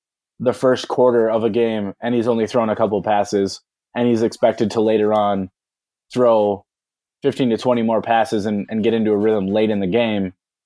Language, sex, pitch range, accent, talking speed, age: English, male, 105-125 Hz, American, 195 wpm, 20-39